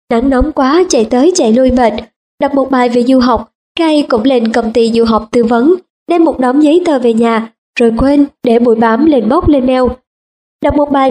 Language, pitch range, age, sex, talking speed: Vietnamese, 230-290 Hz, 20-39, male, 225 wpm